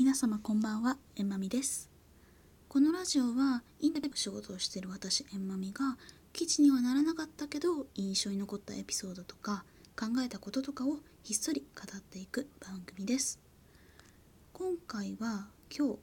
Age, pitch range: 20-39, 190-265 Hz